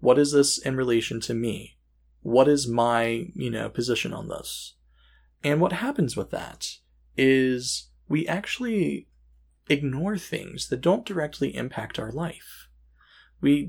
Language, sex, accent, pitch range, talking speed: English, male, American, 110-170 Hz, 140 wpm